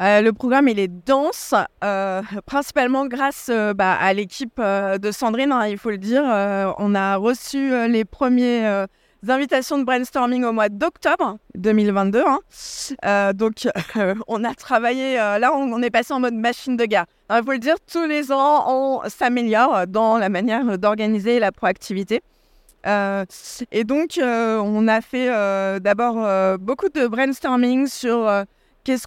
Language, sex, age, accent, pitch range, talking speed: French, female, 20-39, French, 205-260 Hz, 180 wpm